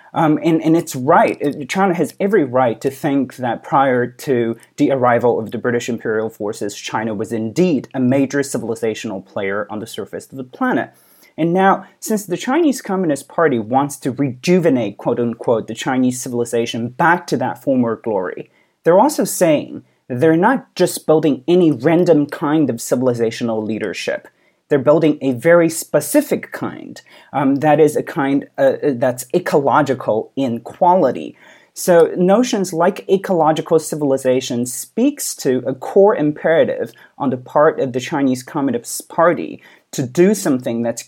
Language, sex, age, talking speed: English, male, 30-49, 155 wpm